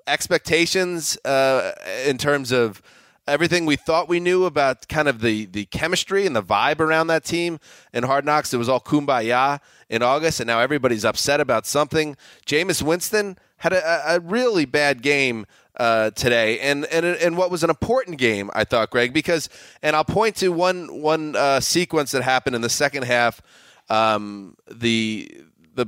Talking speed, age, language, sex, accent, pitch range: 175 wpm, 30-49, English, male, American, 120-160 Hz